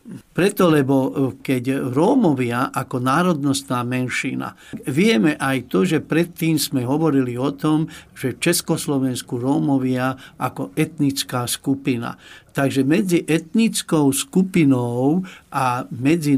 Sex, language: male, Slovak